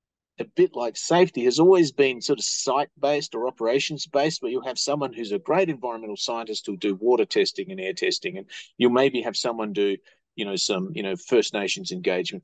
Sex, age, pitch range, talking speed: male, 30-49, 110-180 Hz, 205 wpm